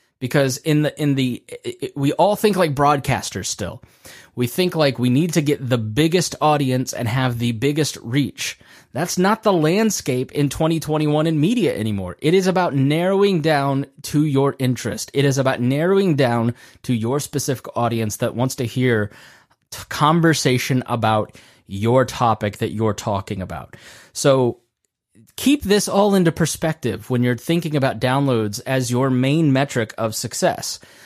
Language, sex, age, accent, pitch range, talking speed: English, male, 20-39, American, 120-155 Hz, 160 wpm